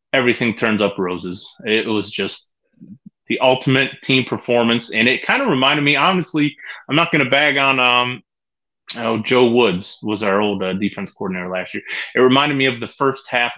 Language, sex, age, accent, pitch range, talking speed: English, male, 30-49, American, 100-125 Hz, 185 wpm